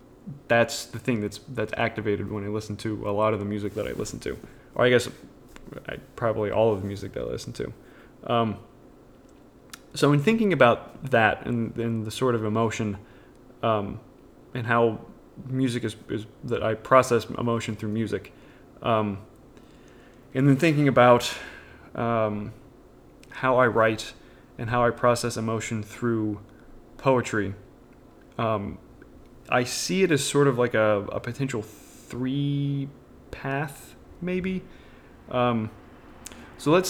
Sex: male